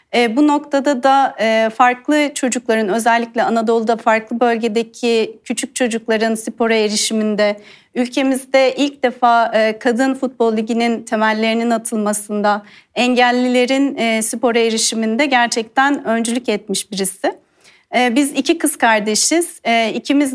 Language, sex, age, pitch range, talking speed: Turkish, female, 40-59, 230-270 Hz, 95 wpm